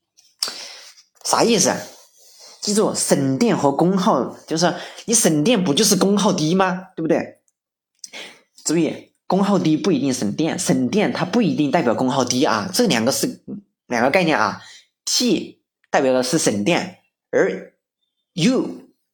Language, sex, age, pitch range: Chinese, male, 30-49, 145-200 Hz